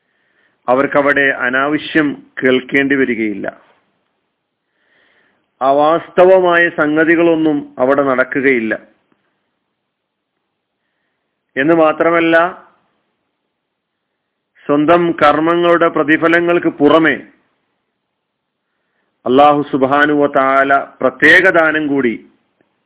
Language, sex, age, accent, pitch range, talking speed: Malayalam, male, 40-59, native, 135-160 Hz, 50 wpm